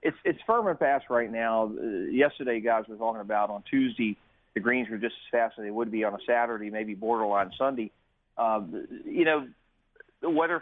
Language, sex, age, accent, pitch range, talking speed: English, male, 40-59, American, 110-135 Hz, 210 wpm